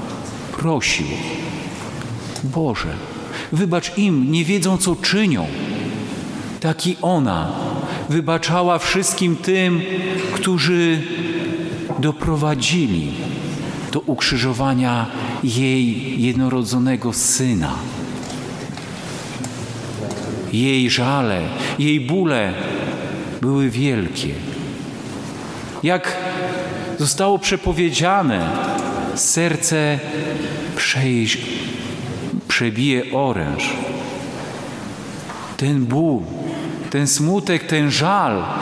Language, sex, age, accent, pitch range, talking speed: Polish, male, 50-69, native, 135-180 Hz, 60 wpm